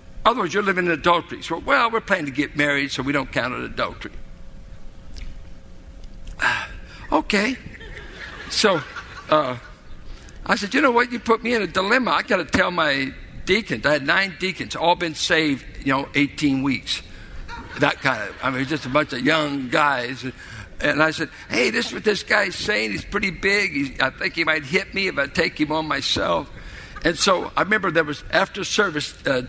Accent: American